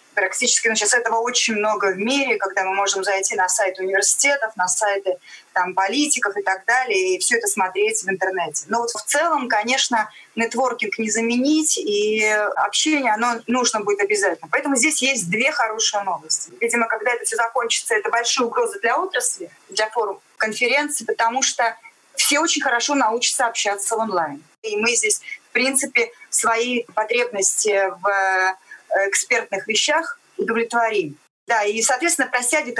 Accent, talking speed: native, 155 wpm